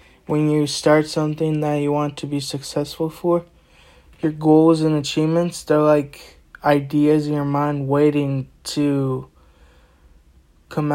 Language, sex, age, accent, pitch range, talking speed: English, male, 20-39, American, 135-155 Hz, 130 wpm